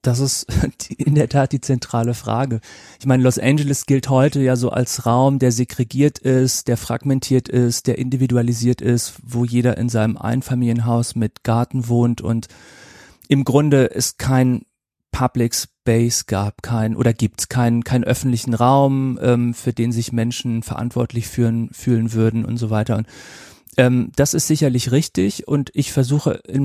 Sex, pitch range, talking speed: male, 115-130 Hz, 160 wpm